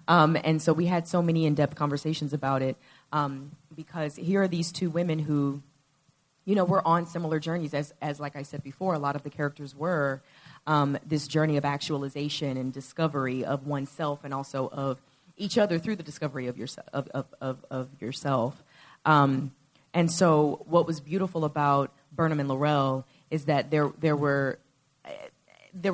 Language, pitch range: English, 140-170 Hz